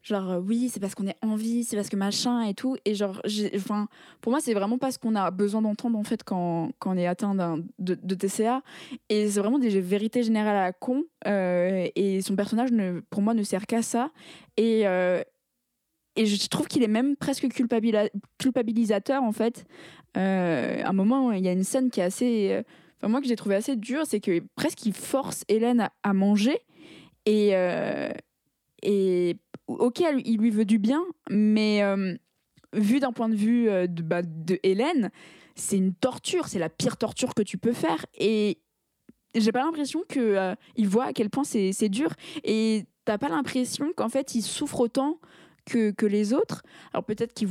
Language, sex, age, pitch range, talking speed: French, female, 20-39, 195-245 Hz, 200 wpm